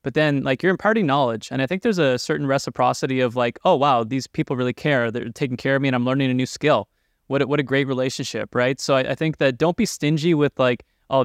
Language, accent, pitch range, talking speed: English, American, 120-140 Hz, 260 wpm